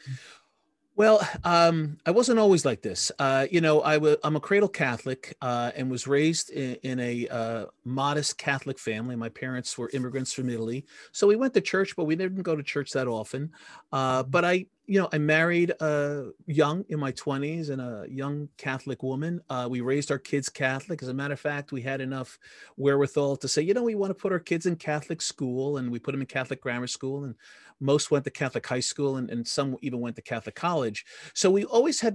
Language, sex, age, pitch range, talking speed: English, male, 40-59, 130-165 Hz, 220 wpm